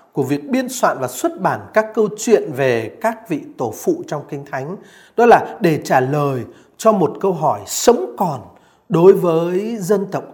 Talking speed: 190 wpm